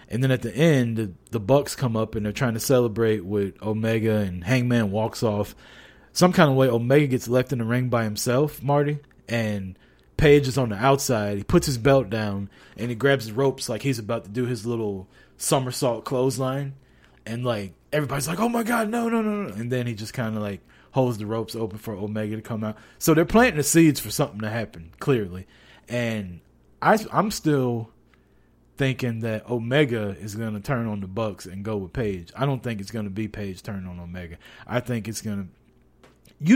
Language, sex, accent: English, male, American